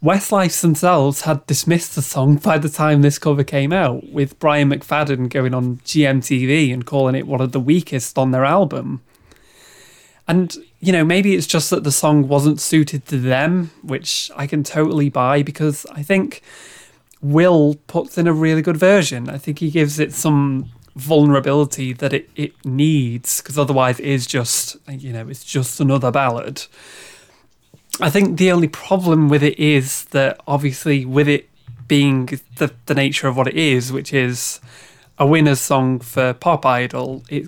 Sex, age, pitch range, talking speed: male, 20-39, 135-155 Hz, 170 wpm